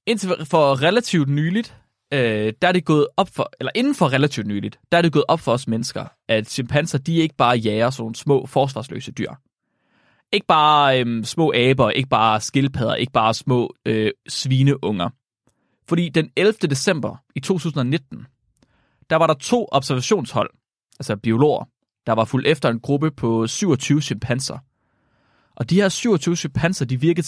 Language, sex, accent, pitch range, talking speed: Danish, male, native, 115-160 Hz, 165 wpm